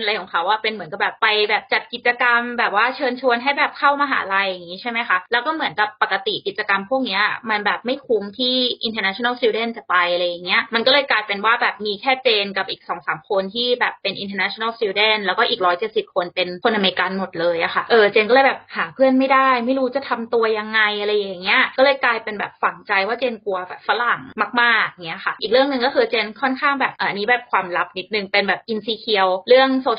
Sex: female